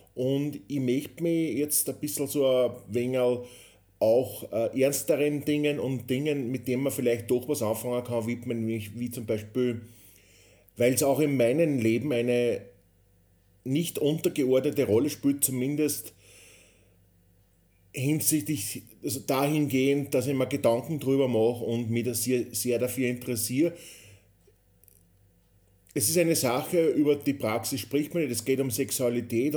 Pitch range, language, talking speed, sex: 110-135 Hz, German, 135 wpm, male